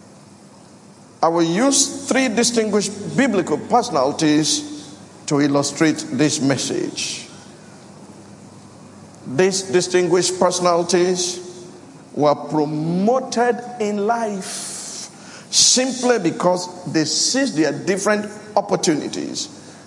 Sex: male